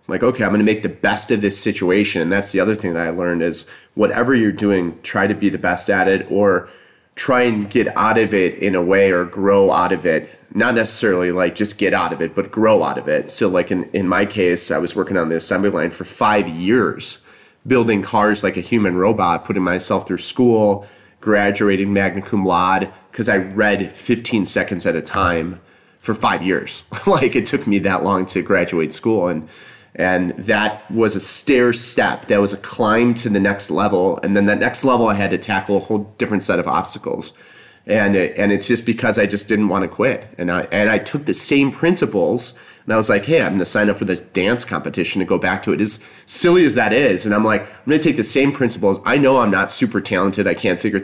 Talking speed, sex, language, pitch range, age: 235 wpm, male, English, 95-115 Hz, 30-49